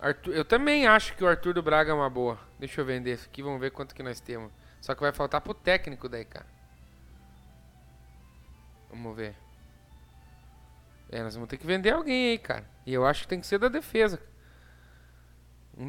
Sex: male